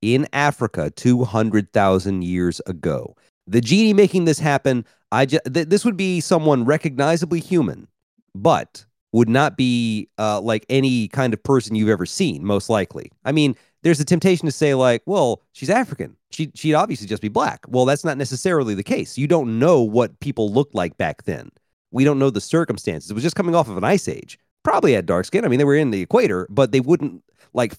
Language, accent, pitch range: English, American, 105-155 Hz